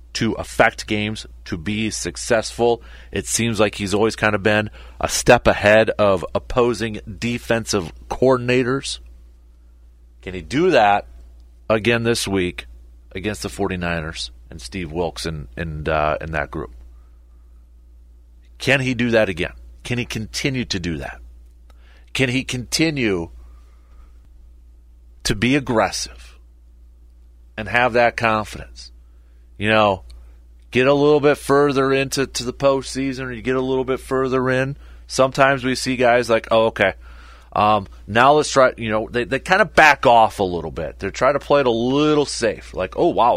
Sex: male